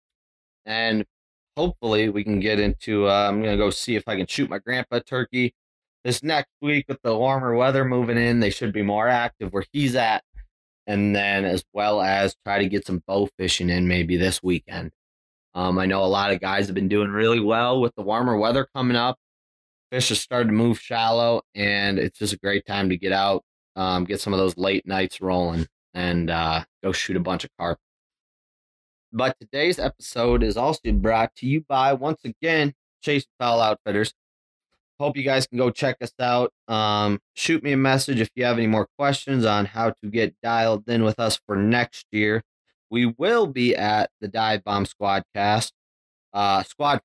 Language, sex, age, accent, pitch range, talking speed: English, male, 20-39, American, 100-120 Hz, 195 wpm